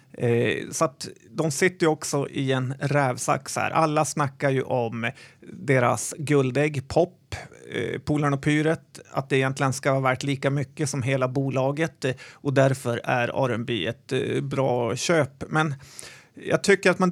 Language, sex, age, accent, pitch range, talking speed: Swedish, male, 30-49, native, 130-155 Hz, 165 wpm